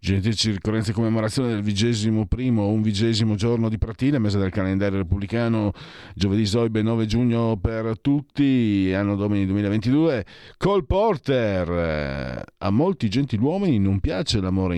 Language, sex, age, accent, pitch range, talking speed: Italian, male, 50-69, native, 90-115 Hz, 135 wpm